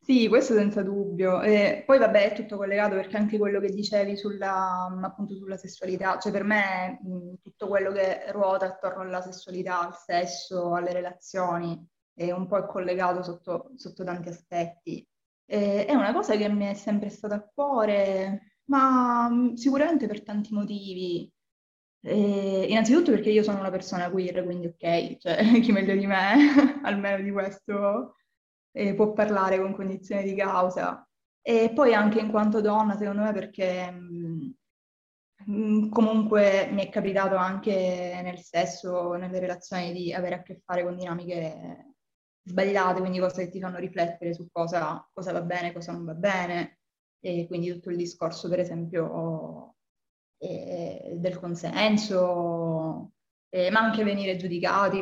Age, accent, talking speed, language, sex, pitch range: 20-39, native, 155 wpm, Italian, female, 180-205 Hz